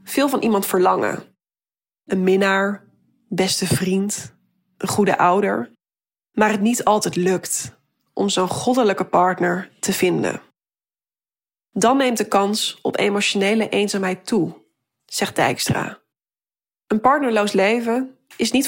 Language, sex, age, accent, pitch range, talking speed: Dutch, female, 20-39, Dutch, 190-225 Hz, 120 wpm